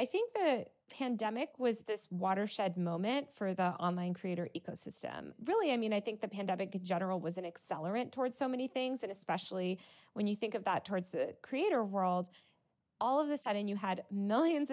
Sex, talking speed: female, 190 wpm